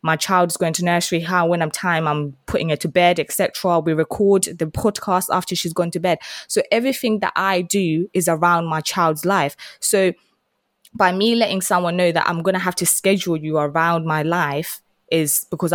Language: English